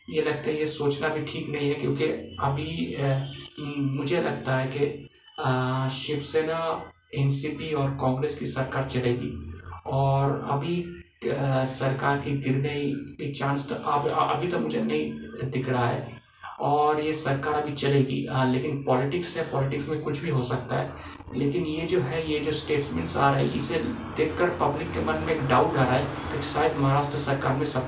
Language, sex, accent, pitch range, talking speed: Hindi, male, native, 130-150 Hz, 175 wpm